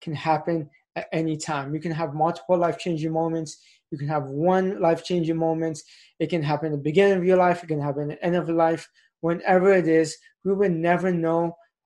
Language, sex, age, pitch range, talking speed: English, male, 20-39, 160-185 Hz, 215 wpm